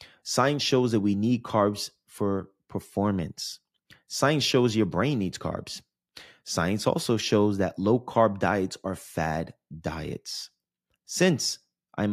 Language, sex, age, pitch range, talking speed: English, male, 30-49, 90-120 Hz, 130 wpm